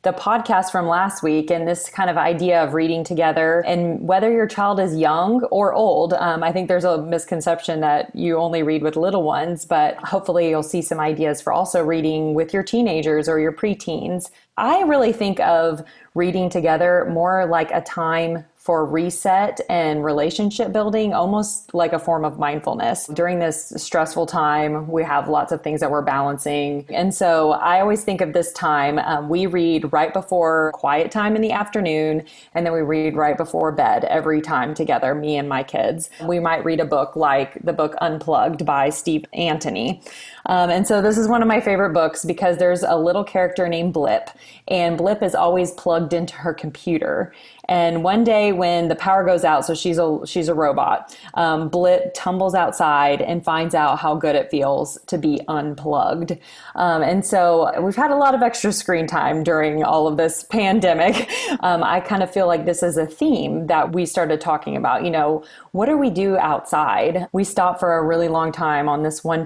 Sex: female